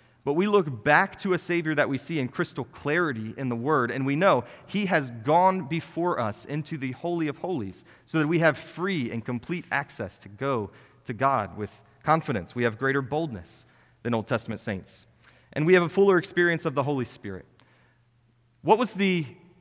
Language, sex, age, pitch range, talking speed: English, male, 30-49, 120-165 Hz, 195 wpm